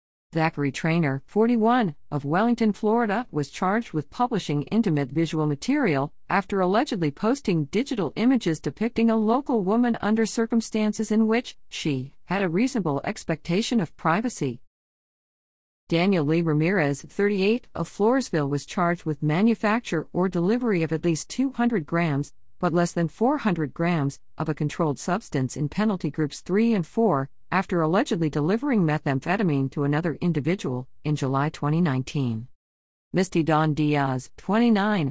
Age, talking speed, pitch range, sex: 50-69, 135 wpm, 150-210 Hz, female